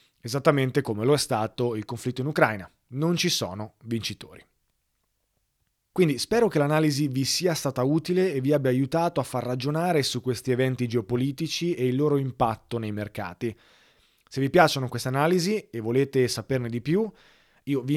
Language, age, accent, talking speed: Italian, 30-49, native, 165 wpm